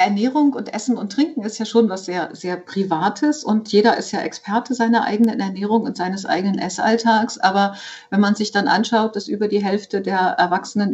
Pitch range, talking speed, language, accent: 190-230 Hz, 200 wpm, German, German